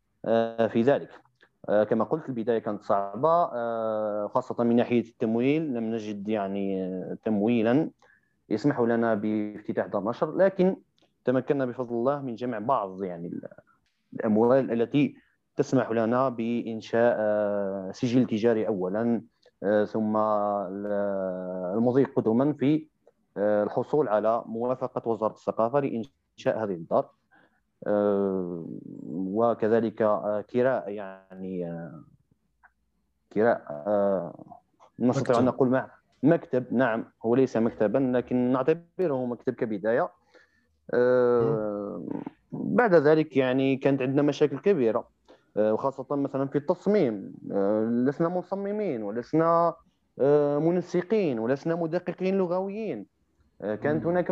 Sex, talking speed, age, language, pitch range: male, 95 wpm, 30-49, Arabic, 105-140 Hz